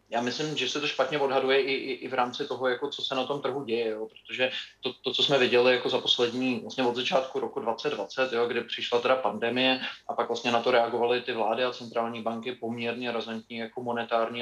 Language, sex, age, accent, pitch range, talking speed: Czech, male, 20-39, native, 115-120 Hz, 230 wpm